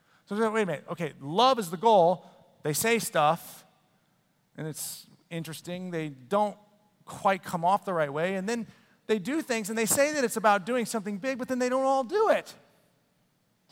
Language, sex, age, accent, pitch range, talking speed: English, male, 30-49, American, 190-255 Hz, 195 wpm